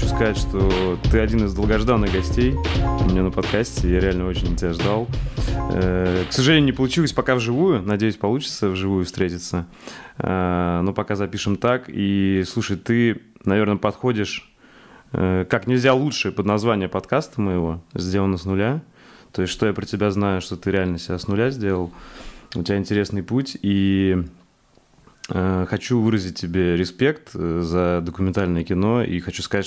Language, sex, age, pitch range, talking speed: Russian, male, 20-39, 90-105 Hz, 155 wpm